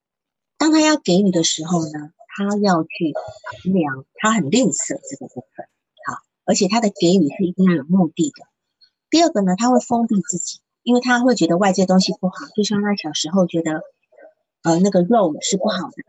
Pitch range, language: 170-235 Hz, Chinese